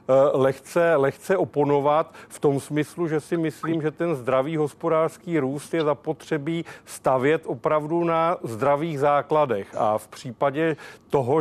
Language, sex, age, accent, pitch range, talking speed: Czech, male, 40-59, native, 135-160 Hz, 130 wpm